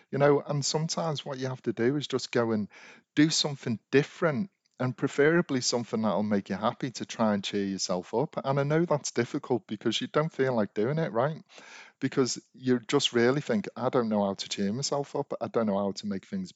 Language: English